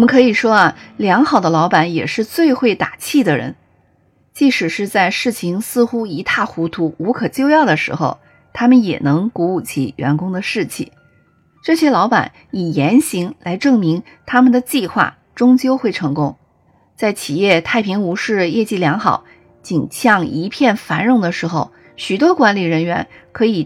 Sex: female